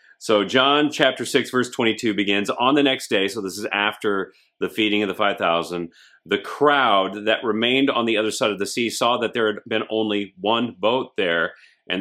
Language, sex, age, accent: English, male, 40-59, American